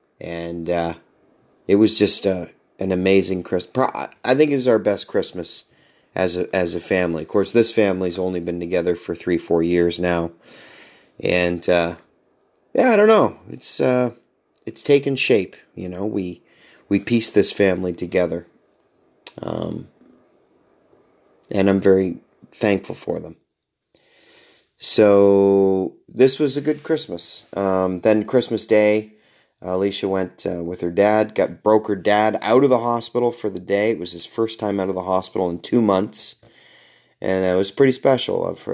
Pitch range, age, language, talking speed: 90-105 Hz, 30-49, English, 160 wpm